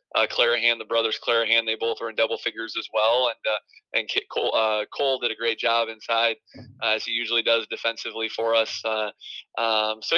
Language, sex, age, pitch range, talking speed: English, male, 20-39, 115-140 Hz, 200 wpm